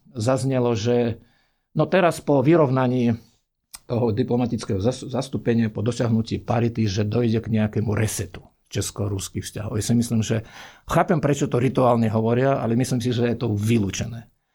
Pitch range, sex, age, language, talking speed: 110-135 Hz, male, 50-69, Slovak, 145 wpm